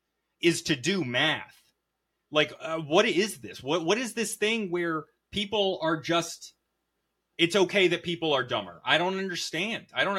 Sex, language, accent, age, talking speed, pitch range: male, English, American, 30-49, 170 wpm, 115-165 Hz